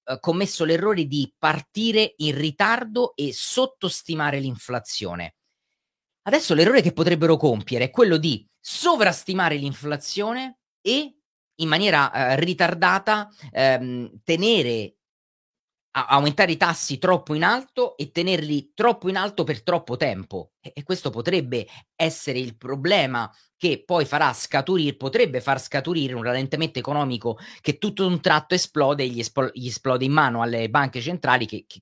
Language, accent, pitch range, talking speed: Italian, native, 125-170 Hz, 130 wpm